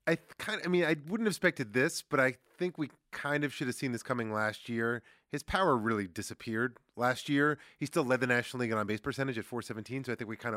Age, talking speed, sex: 30-49, 255 wpm, male